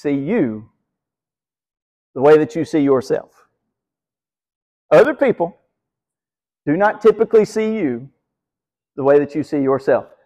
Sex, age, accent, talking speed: male, 50-69, American, 125 wpm